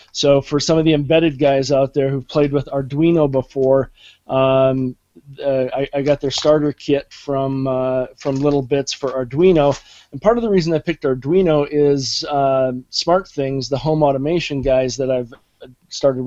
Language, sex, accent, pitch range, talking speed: English, male, American, 130-150 Hz, 175 wpm